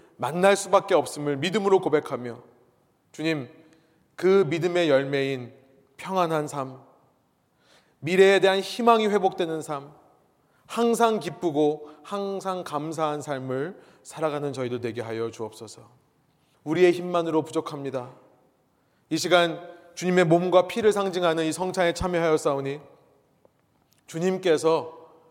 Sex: male